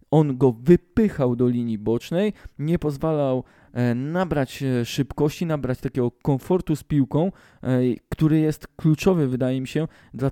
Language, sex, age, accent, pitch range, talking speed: Polish, male, 20-39, native, 120-150 Hz, 130 wpm